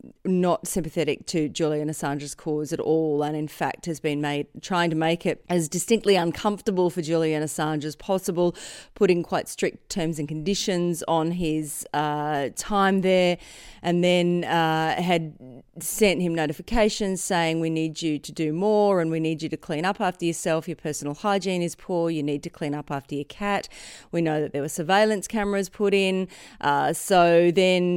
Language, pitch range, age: English, 155-185 Hz, 30-49